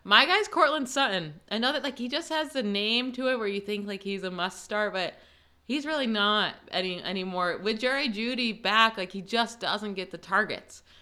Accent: American